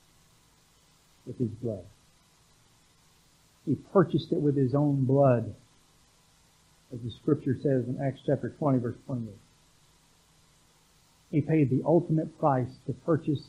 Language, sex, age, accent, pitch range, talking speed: English, male, 60-79, American, 130-160 Hz, 120 wpm